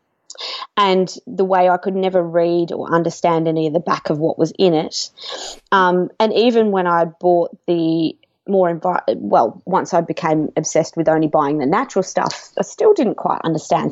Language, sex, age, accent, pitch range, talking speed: English, female, 20-39, Australian, 165-195 Hz, 180 wpm